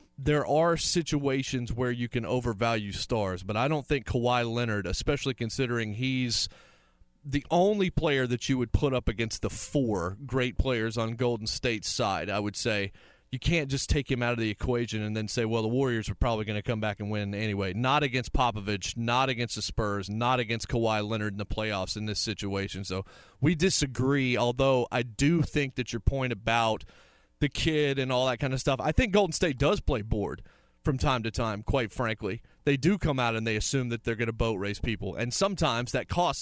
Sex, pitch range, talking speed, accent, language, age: male, 110-140 Hz, 210 wpm, American, English, 30-49